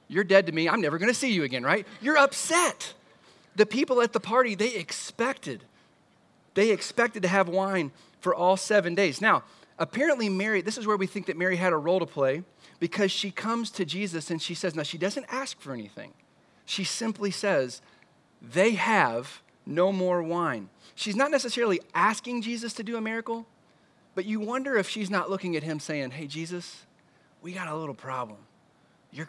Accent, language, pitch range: American, English, 140-205 Hz